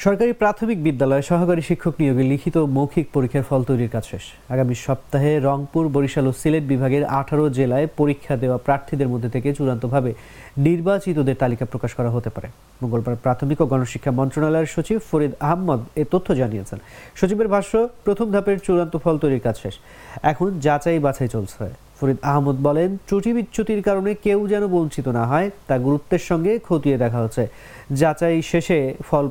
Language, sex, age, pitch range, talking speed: English, male, 30-49, 130-175 Hz, 140 wpm